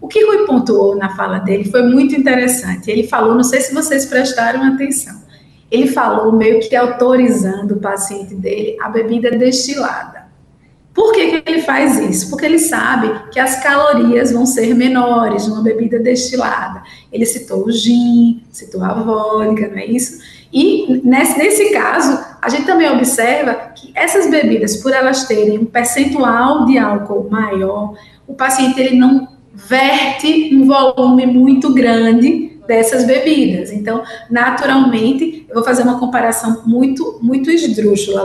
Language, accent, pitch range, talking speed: Portuguese, Brazilian, 225-280 Hz, 150 wpm